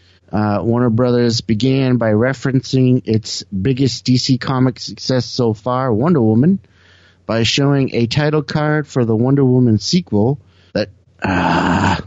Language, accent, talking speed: English, American, 135 wpm